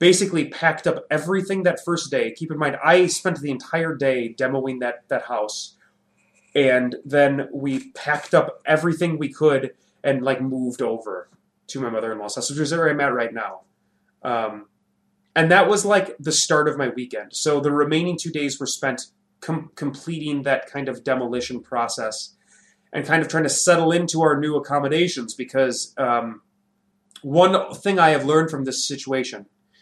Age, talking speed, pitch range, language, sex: 30-49, 175 wpm, 135-180 Hz, English, male